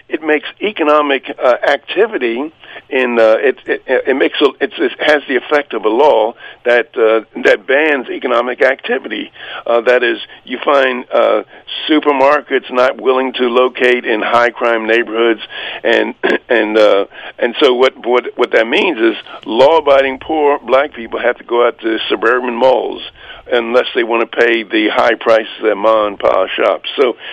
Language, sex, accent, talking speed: English, male, American, 175 wpm